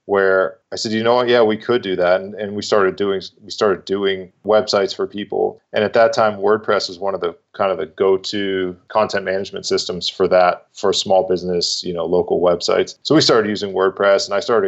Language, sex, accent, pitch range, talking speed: English, male, American, 95-110 Hz, 225 wpm